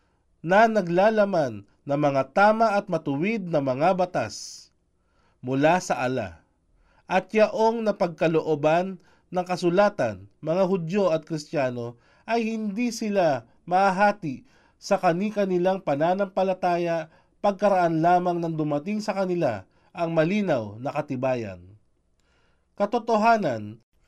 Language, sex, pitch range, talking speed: Filipino, male, 145-200 Hz, 100 wpm